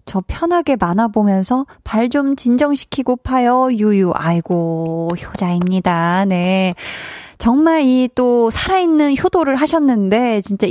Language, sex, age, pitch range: Korean, female, 20-39, 205-280 Hz